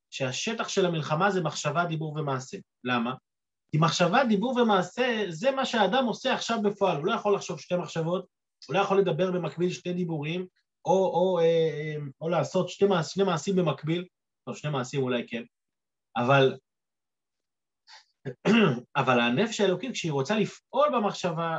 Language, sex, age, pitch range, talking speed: Hebrew, male, 30-49, 145-200 Hz, 145 wpm